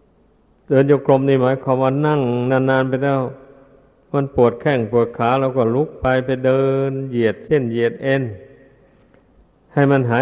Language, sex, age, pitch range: Thai, male, 60-79, 125-140 Hz